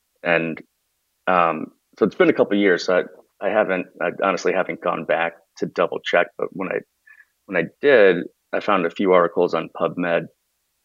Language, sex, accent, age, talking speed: English, male, American, 30-49, 190 wpm